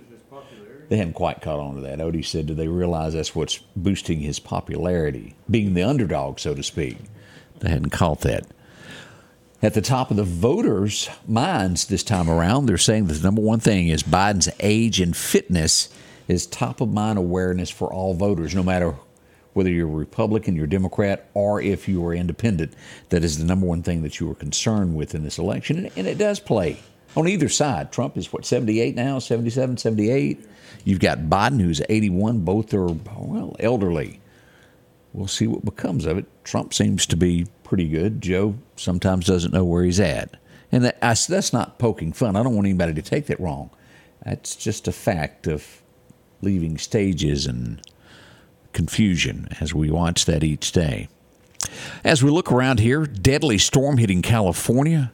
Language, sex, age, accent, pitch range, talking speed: English, male, 50-69, American, 85-110 Hz, 175 wpm